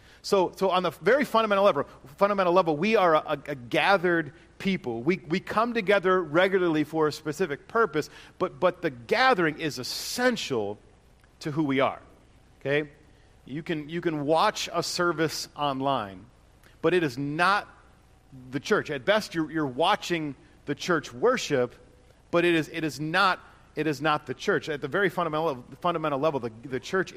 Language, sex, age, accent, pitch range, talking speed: English, male, 40-59, American, 130-175 Hz, 175 wpm